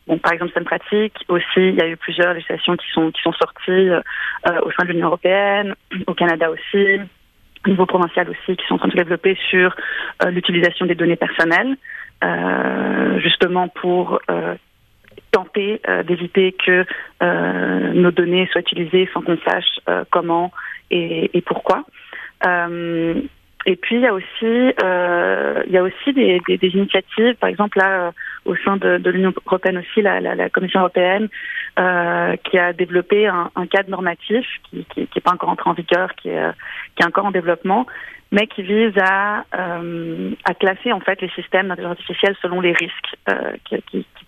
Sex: female